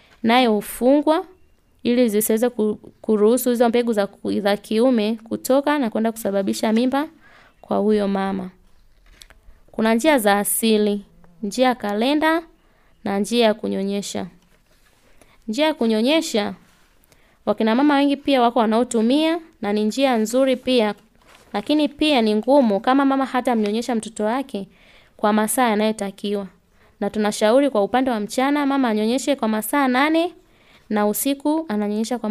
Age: 20-39